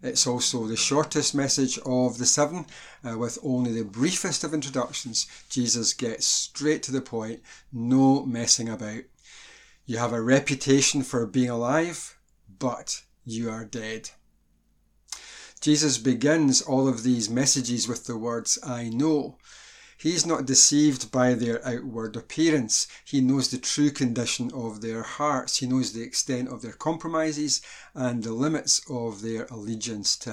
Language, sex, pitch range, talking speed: English, male, 115-135 Hz, 150 wpm